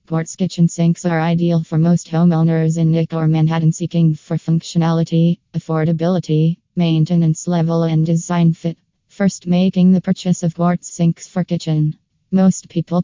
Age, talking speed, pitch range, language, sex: 20-39, 145 wpm, 165-175 Hz, English, female